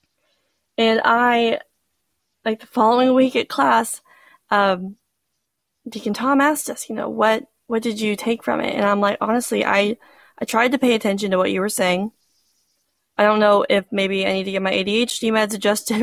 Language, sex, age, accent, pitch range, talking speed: English, female, 20-39, American, 205-240 Hz, 185 wpm